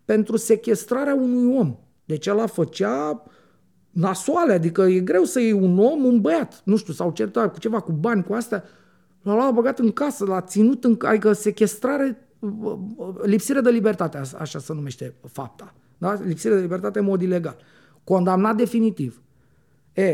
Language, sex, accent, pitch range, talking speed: Romanian, male, native, 150-220 Hz, 160 wpm